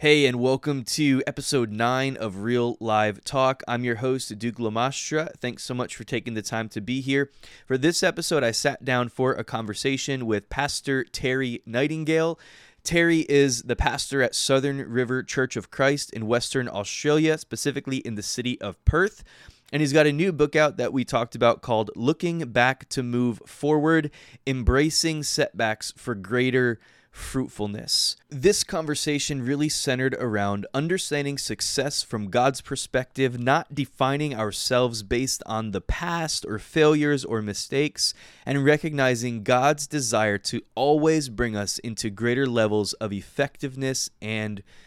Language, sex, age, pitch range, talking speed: English, male, 20-39, 115-145 Hz, 150 wpm